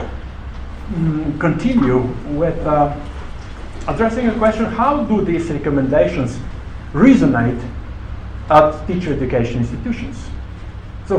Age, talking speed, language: 50-69, 90 wpm, English